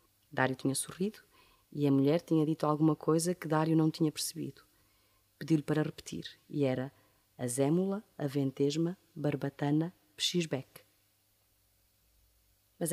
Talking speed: 125 wpm